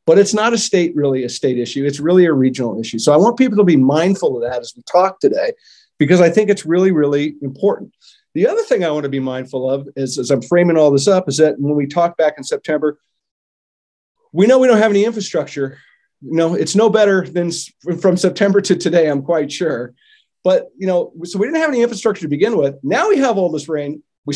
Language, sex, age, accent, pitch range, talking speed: English, male, 40-59, American, 145-215 Hz, 240 wpm